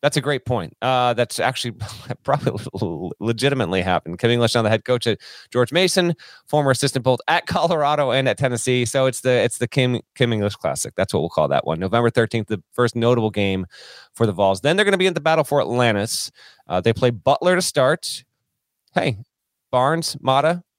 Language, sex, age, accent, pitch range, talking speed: English, male, 30-49, American, 105-135 Hz, 200 wpm